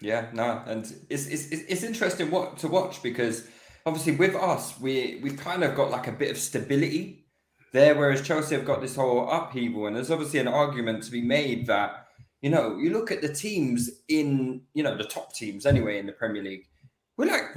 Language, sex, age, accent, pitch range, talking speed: English, male, 20-39, British, 110-140 Hz, 210 wpm